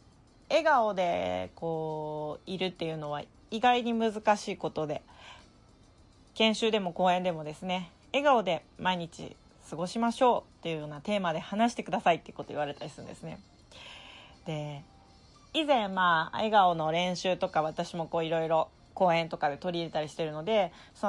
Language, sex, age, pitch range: Japanese, female, 30-49, 165-225 Hz